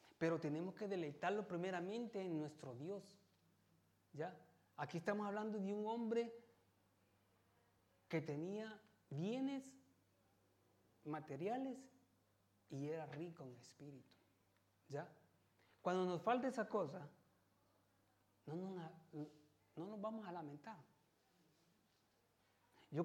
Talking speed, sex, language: 100 wpm, male, Italian